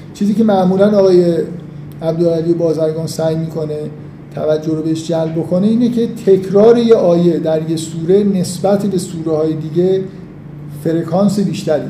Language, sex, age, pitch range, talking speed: Persian, male, 50-69, 160-200 Hz, 140 wpm